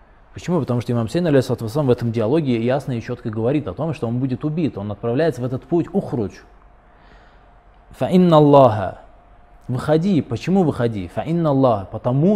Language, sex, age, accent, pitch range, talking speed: Russian, male, 20-39, native, 110-140 Hz, 135 wpm